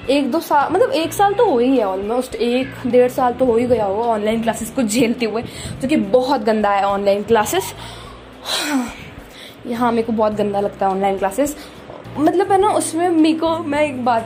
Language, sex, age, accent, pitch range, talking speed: Hindi, female, 20-39, native, 235-300 Hz, 200 wpm